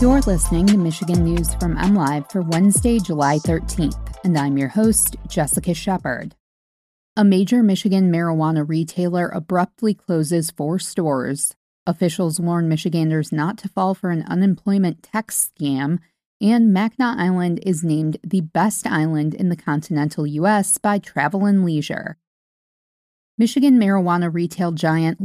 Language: English